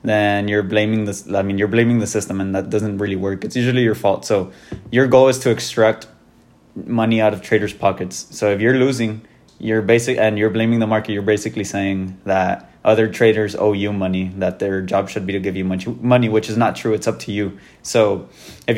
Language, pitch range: English, 100-120 Hz